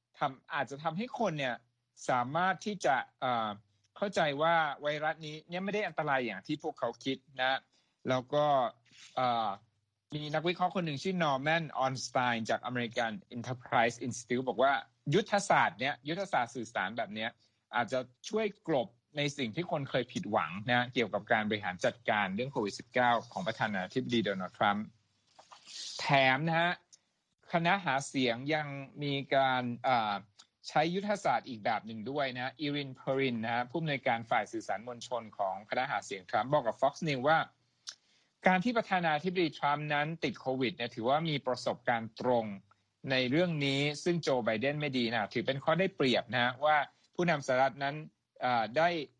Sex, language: male, Thai